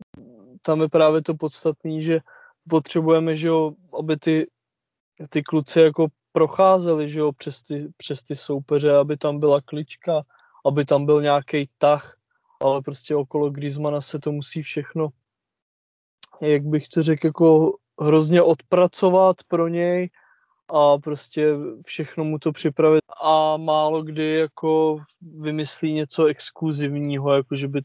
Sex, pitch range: male, 140-160 Hz